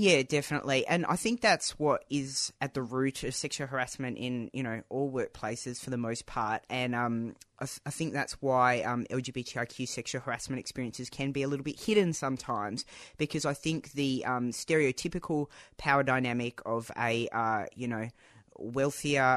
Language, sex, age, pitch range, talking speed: English, female, 20-39, 120-140 Hz, 175 wpm